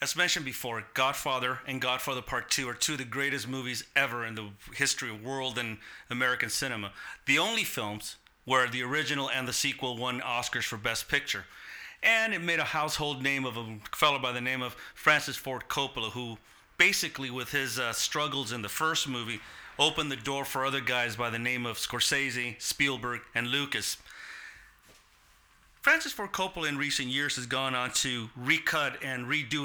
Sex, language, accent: male, English, American